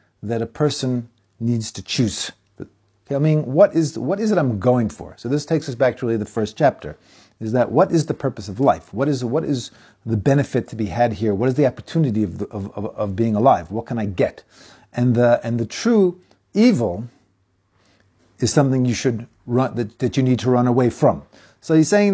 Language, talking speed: English, 220 wpm